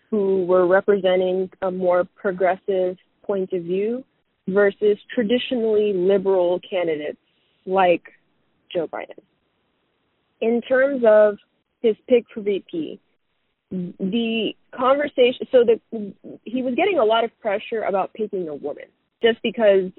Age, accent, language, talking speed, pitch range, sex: 20-39, American, English, 120 wpm, 180-220 Hz, female